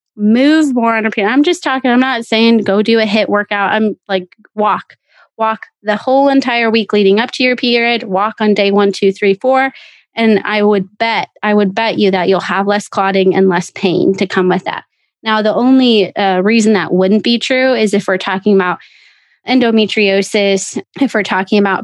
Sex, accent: female, American